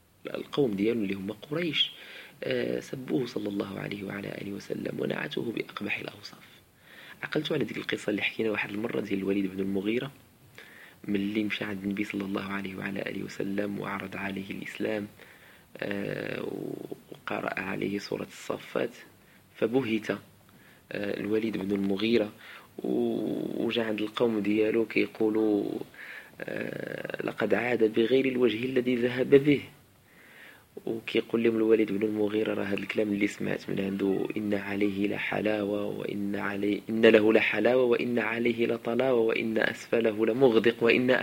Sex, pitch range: male, 100-120 Hz